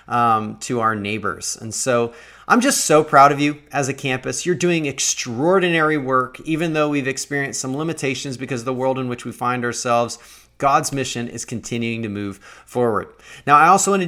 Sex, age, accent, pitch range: male, 30-49, American, 130-170 Hz